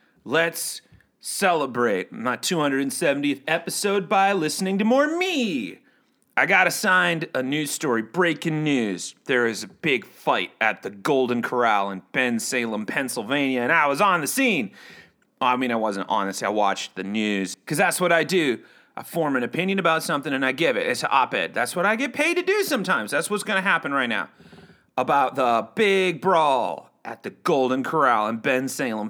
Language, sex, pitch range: English, male, 130-210 Hz